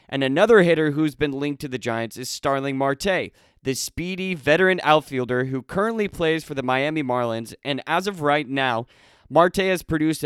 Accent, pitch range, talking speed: American, 130-165 Hz, 180 wpm